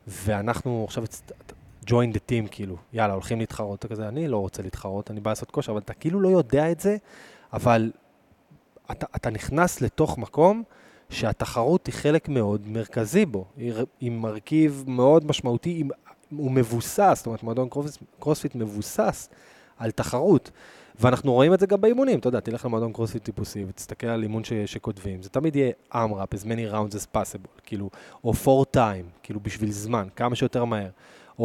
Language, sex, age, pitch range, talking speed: Hebrew, male, 20-39, 110-145 Hz, 170 wpm